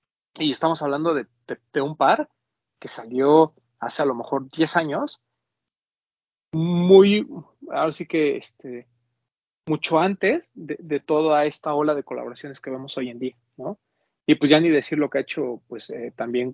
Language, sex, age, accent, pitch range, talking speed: Spanish, male, 30-49, Mexican, 125-155 Hz, 175 wpm